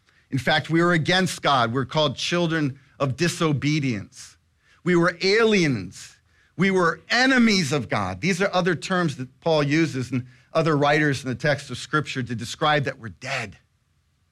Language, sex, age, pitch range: English, male, 40-59, 120-150 Hz